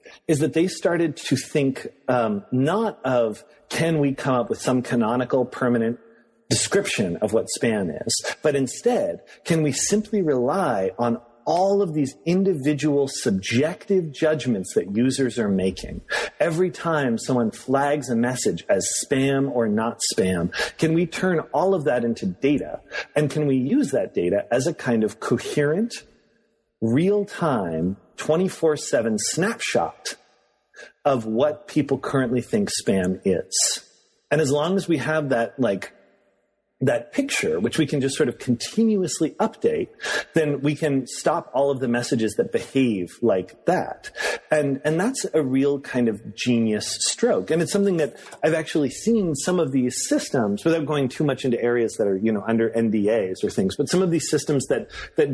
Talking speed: 165 wpm